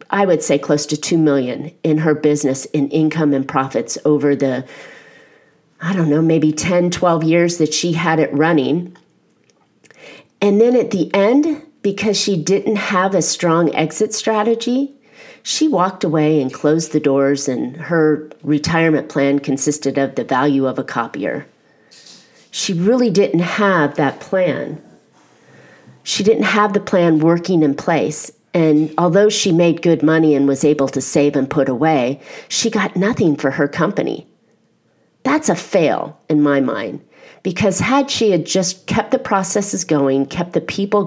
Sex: female